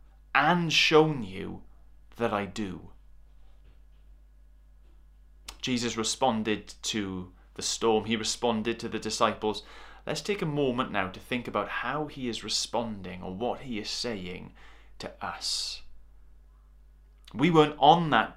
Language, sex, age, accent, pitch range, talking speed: English, male, 30-49, British, 80-120 Hz, 125 wpm